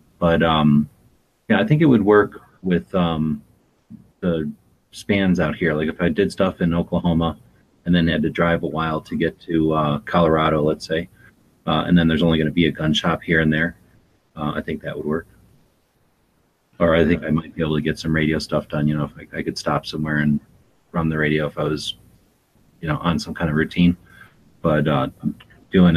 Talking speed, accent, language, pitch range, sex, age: 215 wpm, American, English, 75-85 Hz, male, 30-49